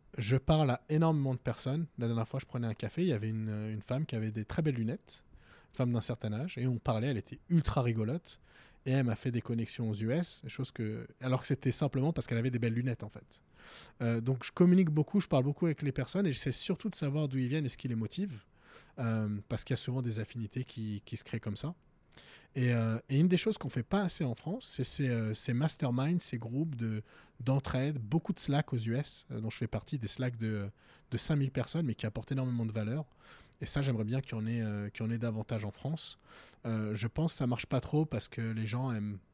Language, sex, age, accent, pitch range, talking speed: French, male, 20-39, French, 110-140 Hz, 255 wpm